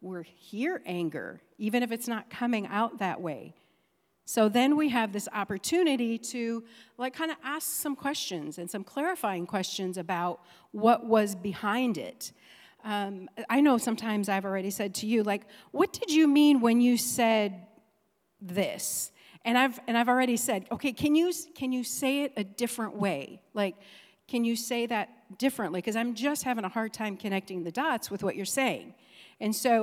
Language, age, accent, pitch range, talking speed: English, 40-59, American, 200-255 Hz, 180 wpm